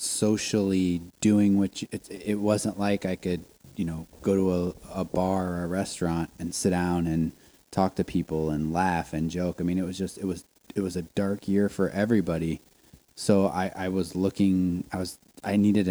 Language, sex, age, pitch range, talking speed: English, male, 20-39, 85-100 Hz, 200 wpm